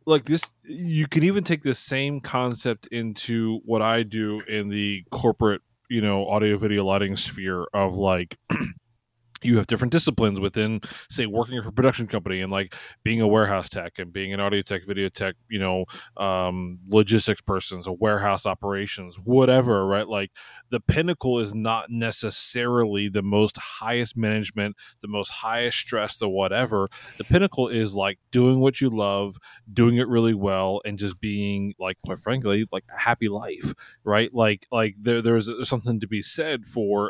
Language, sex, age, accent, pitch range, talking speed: English, male, 20-39, American, 100-125 Hz, 170 wpm